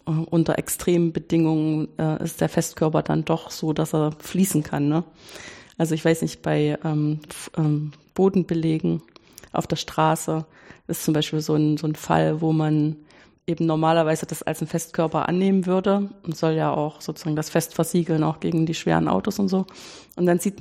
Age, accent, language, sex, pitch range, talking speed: 30-49, German, German, female, 160-180 Hz, 175 wpm